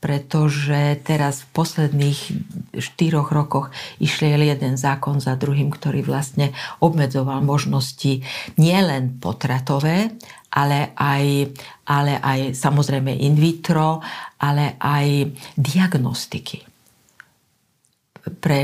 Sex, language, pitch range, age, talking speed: female, Slovak, 140-160 Hz, 50-69, 90 wpm